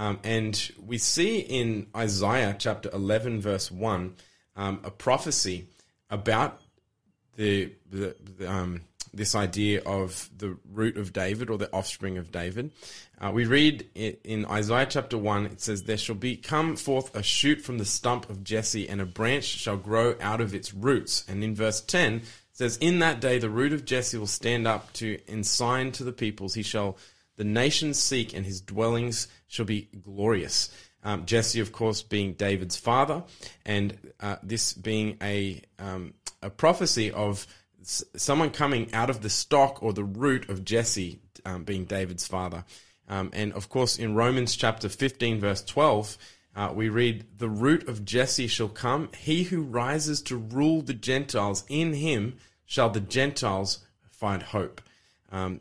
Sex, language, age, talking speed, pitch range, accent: male, English, 20-39, 170 wpm, 100-125 Hz, Australian